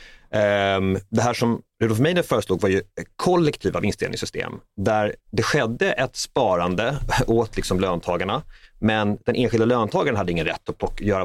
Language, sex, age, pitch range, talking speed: Swedish, male, 30-49, 95-120 Hz, 155 wpm